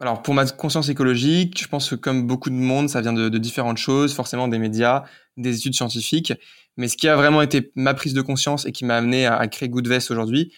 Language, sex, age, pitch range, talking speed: French, male, 20-39, 115-135 Hz, 245 wpm